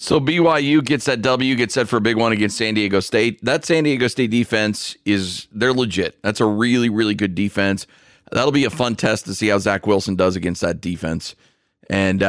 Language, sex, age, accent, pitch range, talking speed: English, male, 40-59, American, 95-115 Hz, 215 wpm